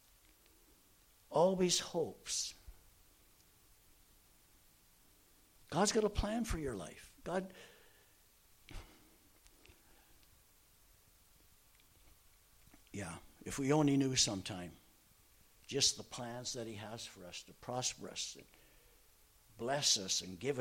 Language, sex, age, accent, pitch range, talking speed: English, male, 60-79, American, 95-140 Hz, 95 wpm